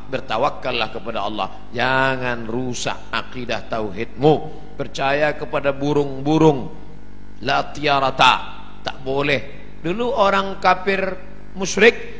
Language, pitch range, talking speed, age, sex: Indonesian, 130-200 Hz, 85 wpm, 50-69, male